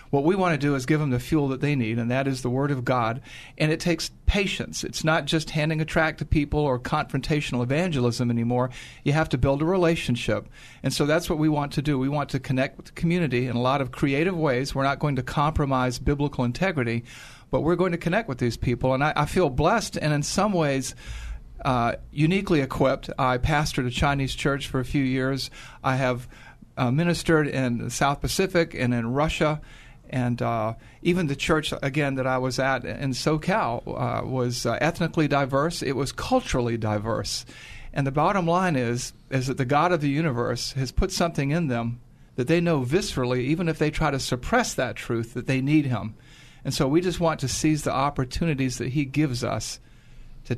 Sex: male